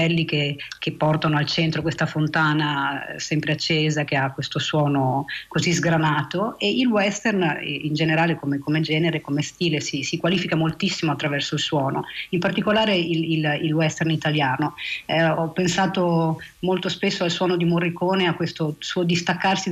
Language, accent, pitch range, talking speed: Italian, native, 155-185 Hz, 155 wpm